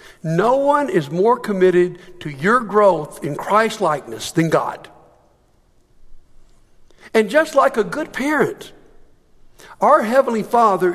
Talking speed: 115 wpm